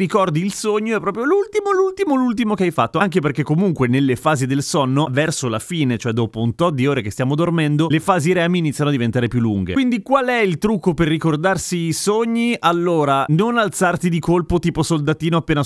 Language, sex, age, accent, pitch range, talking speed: Italian, male, 30-49, native, 120-170 Hz, 210 wpm